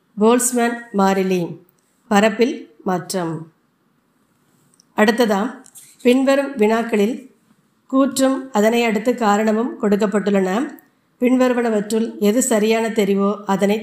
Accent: native